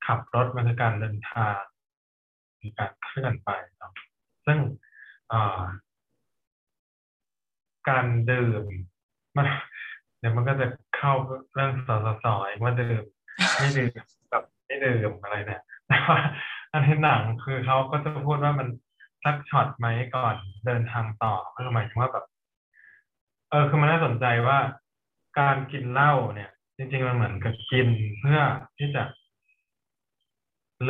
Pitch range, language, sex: 110-135 Hz, Thai, male